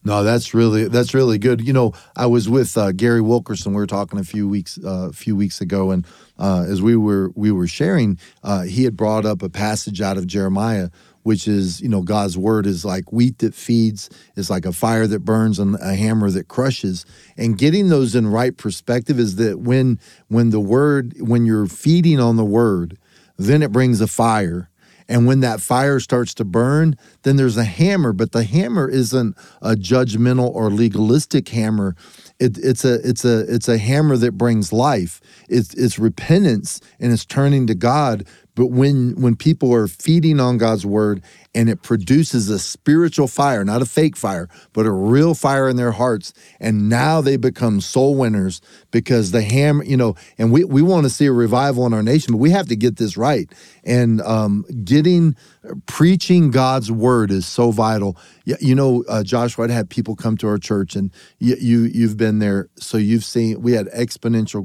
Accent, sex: American, male